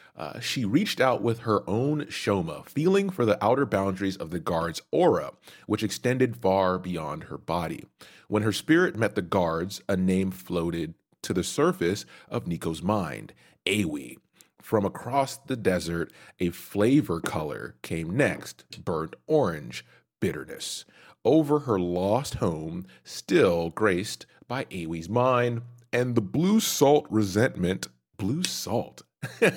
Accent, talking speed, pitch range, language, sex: American, 135 wpm, 90-130 Hz, English, male